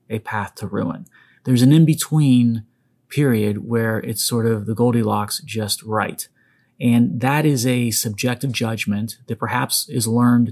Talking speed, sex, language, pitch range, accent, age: 150 wpm, male, English, 105-125 Hz, American, 30-49